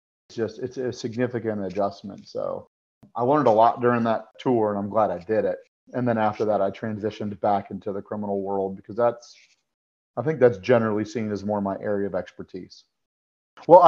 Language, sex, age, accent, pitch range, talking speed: English, male, 40-59, American, 105-130 Hz, 195 wpm